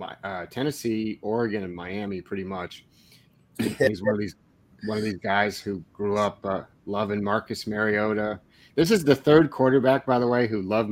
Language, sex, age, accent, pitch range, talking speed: English, male, 30-49, American, 100-115 Hz, 185 wpm